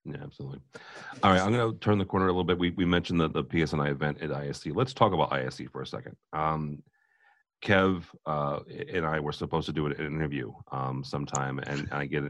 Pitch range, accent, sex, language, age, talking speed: 70-95 Hz, American, male, English, 40-59, 220 wpm